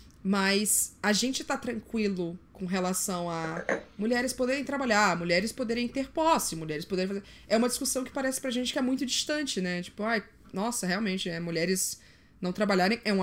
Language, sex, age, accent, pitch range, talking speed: Portuguese, female, 20-39, Brazilian, 185-225 Hz, 180 wpm